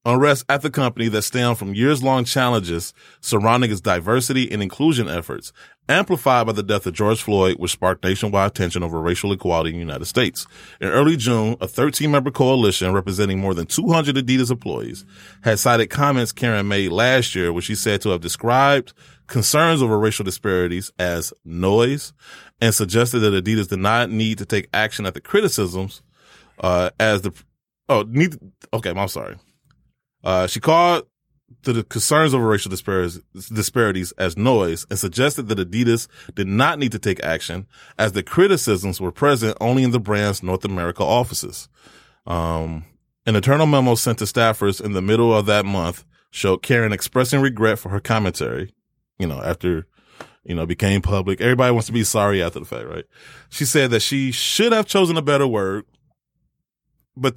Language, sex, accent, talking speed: English, male, American, 175 wpm